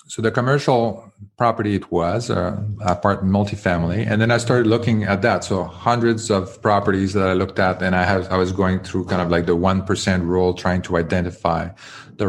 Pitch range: 90-110 Hz